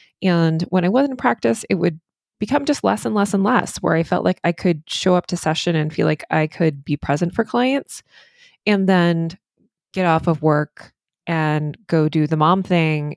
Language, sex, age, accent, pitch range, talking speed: English, female, 20-39, American, 155-205 Hz, 210 wpm